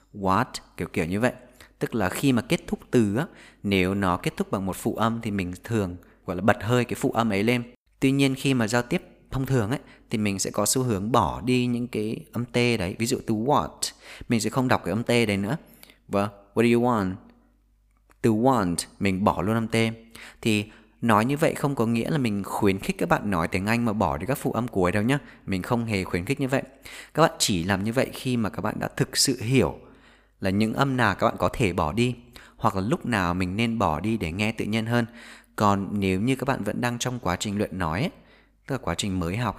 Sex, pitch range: male, 95-120 Hz